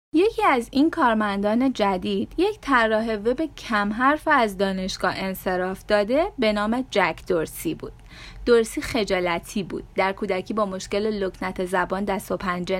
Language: Persian